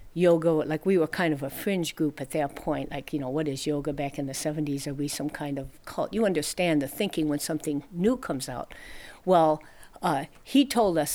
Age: 50-69